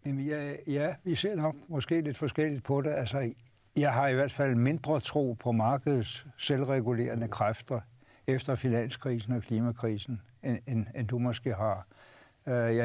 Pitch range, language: 120-145 Hz, Danish